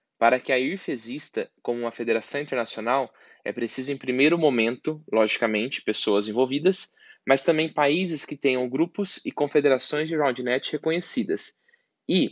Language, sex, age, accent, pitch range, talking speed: Portuguese, male, 20-39, Brazilian, 125-155 Hz, 140 wpm